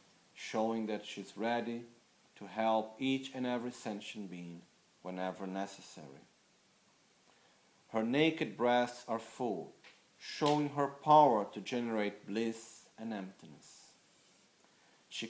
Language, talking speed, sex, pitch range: Italian, 110 wpm, male, 105-130 Hz